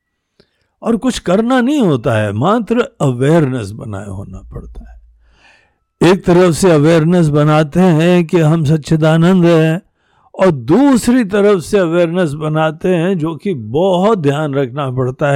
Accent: native